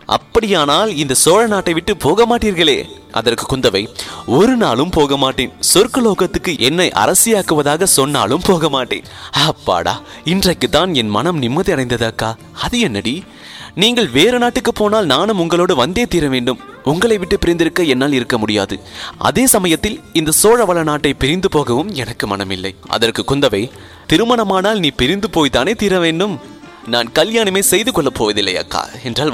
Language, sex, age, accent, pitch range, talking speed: English, male, 30-49, Indian, 130-195 Hz, 125 wpm